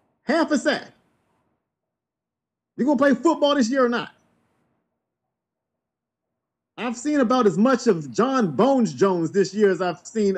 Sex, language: male, English